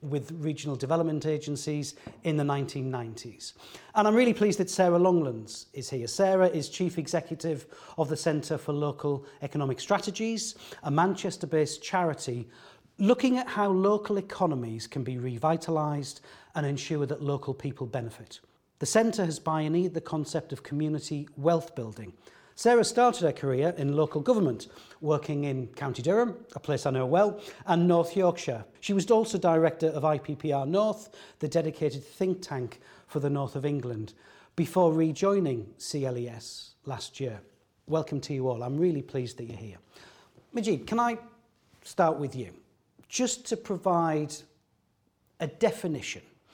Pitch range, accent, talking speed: 135-180 Hz, British, 150 wpm